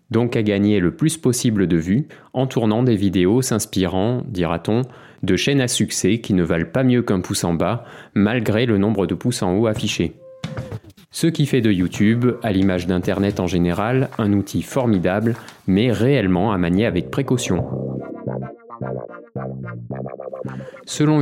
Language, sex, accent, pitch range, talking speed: French, male, French, 95-125 Hz, 155 wpm